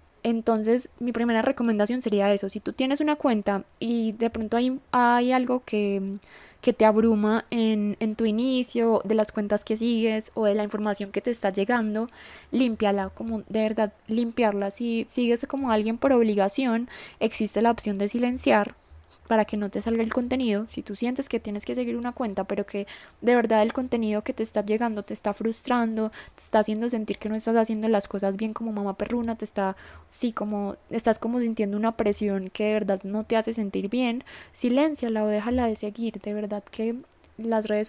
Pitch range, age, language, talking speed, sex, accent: 205-235 Hz, 10-29, Spanish, 195 wpm, female, Colombian